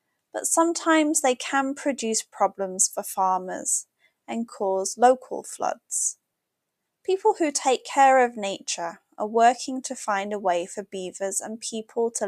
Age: 10-29